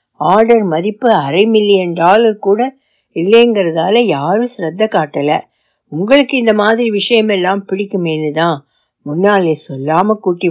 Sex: female